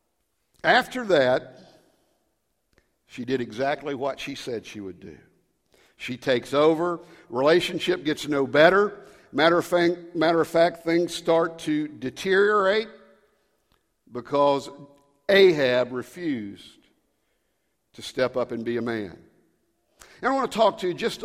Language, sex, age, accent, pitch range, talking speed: English, male, 60-79, American, 150-190 Hz, 125 wpm